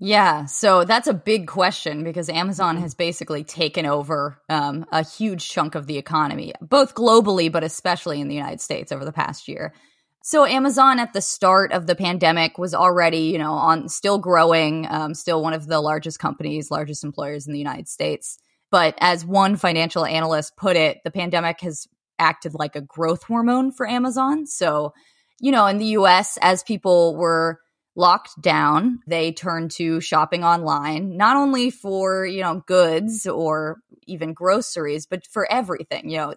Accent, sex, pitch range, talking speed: American, female, 155-190 Hz, 175 wpm